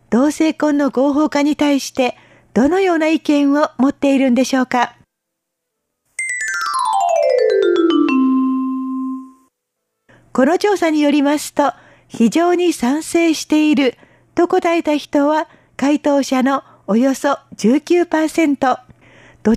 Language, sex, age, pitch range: Japanese, female, 50-69, 260-320 Hz